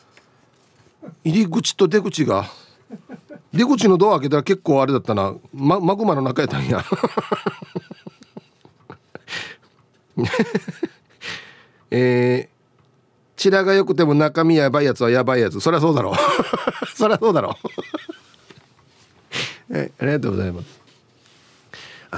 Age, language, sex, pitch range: 40-59, Japanese, male, 115-175 Hz